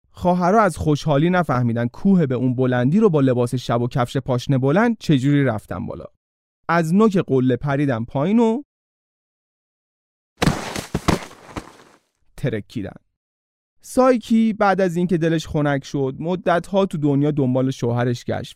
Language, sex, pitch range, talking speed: Persian, male, 125-185 Hz, 125 wpm